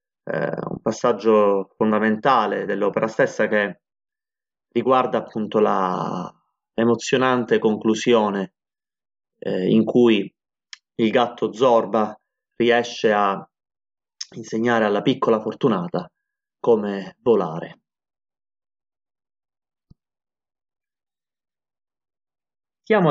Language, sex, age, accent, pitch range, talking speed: Italian, male, 30-49, native, 110-150 Hz, 70 wpm